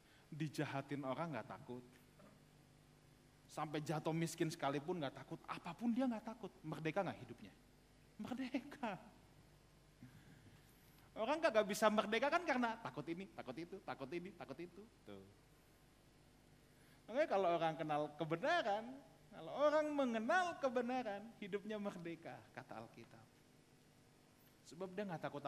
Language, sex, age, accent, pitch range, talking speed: Indonesian, male, 30-49, native, 140-210 Hz, 115 wpm